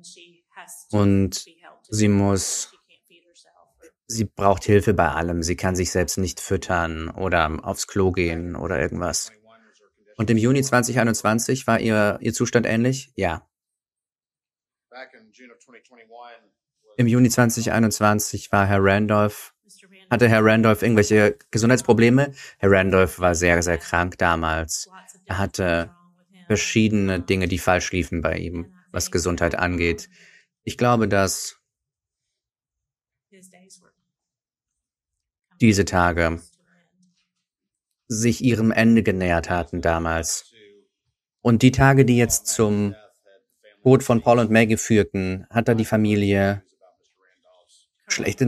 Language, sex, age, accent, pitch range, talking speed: German, male, 30-49, German, 95-120 Hz, 110 wpm